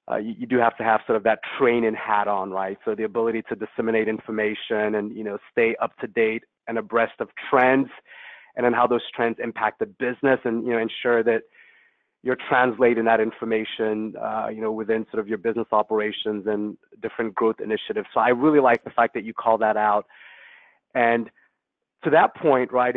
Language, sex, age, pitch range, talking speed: English, male, 30-49, 110-120 Hz, 200 wpm